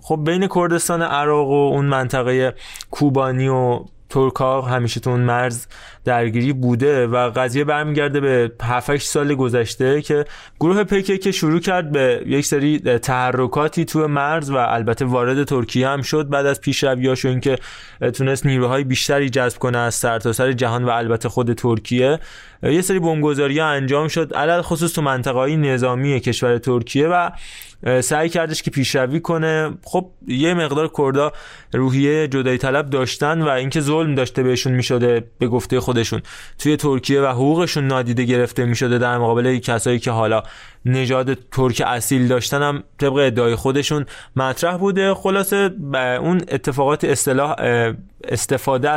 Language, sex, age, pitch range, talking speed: Persian, male, 20-39, 125-155 Hz, 150 wpm